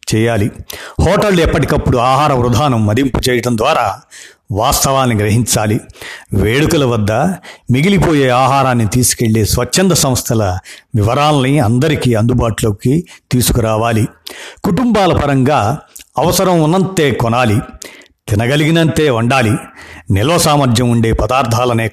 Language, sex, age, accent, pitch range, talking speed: Telugu, male, 50-69, native, 115-155 Hz, 90 wpm